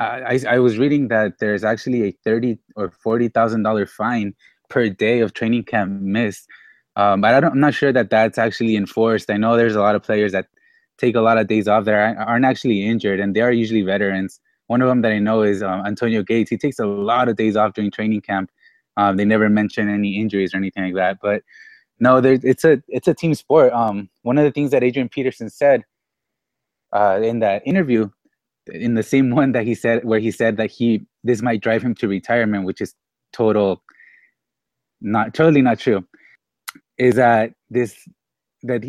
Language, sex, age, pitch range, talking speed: English, male, 20-39, 105-120 Hz, 205 wpm